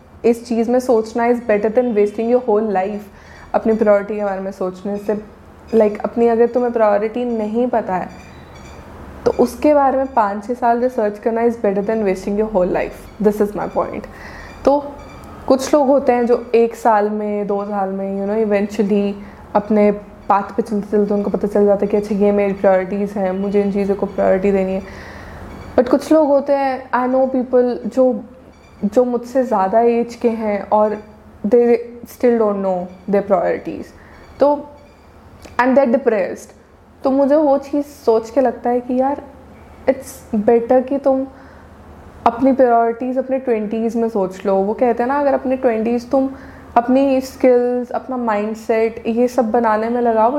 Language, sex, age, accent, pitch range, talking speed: Hindi, female, 20-39, native, 205-250 Hz, 180 wpm